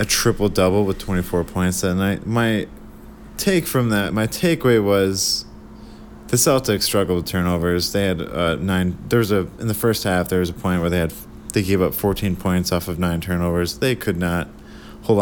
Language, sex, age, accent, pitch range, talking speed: English, male, 20-39, American, 85-105 Hz, 200 wpm